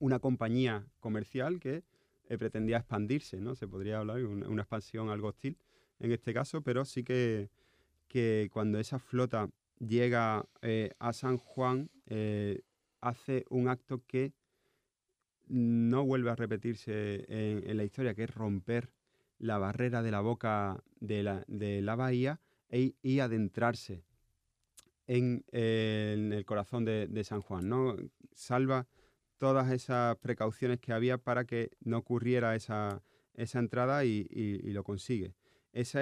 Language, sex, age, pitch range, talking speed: Spanish, male, 30-49, 110-125 Hz, 145 wpm